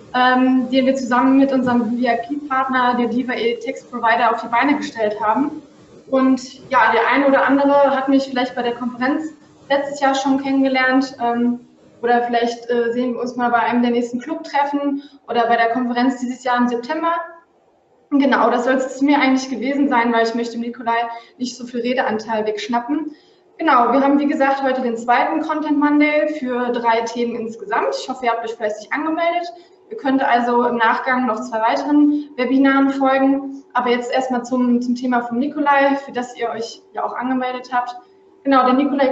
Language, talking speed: German, 190 wpm